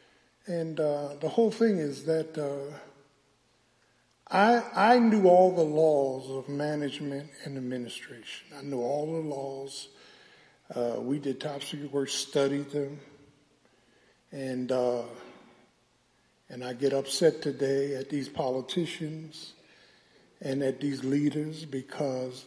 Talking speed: 125 wpm